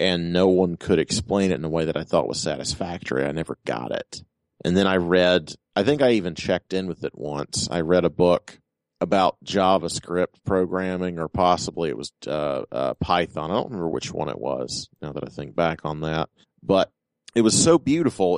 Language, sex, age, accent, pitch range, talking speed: English, male, 40-59, American, 85-100 Hz, 210 wpm